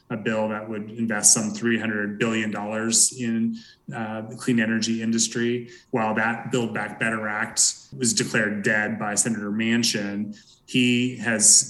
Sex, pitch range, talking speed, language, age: male, 105-120 Hz, 145 wpm, English, 20-39